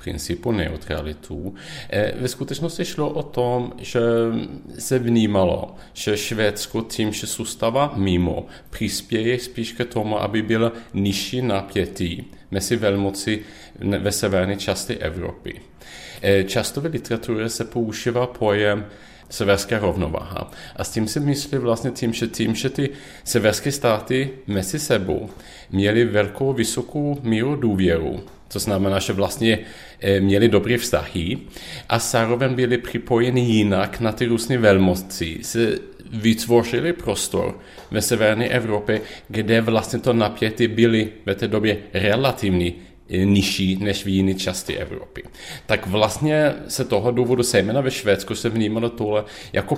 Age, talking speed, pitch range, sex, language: 30-49, 130 wpm, 100-120 Hz, male, Czech